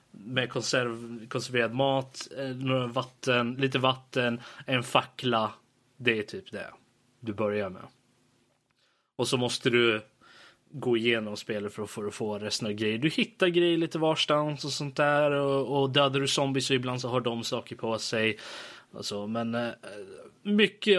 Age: 20-39